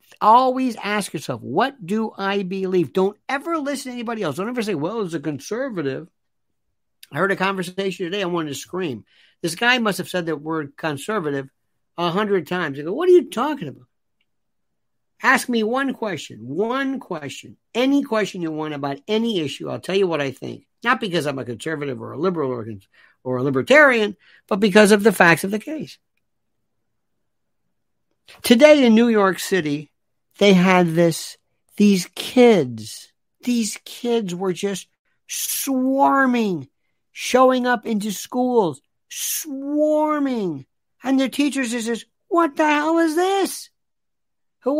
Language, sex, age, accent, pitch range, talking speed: English, male, 60-79, American, 170-260 Hz, 155 wpm